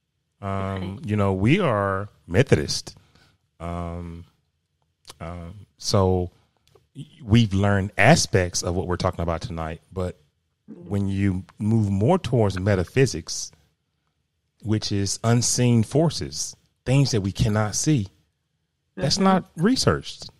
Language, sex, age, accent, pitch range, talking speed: English, male, 30-49, American, 85-110 Hz, 110 wpm